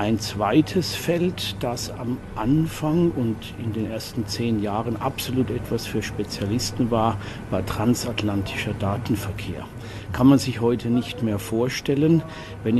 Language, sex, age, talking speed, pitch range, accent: German, male, 50-69, 130 wpm, 105-130 Hz, German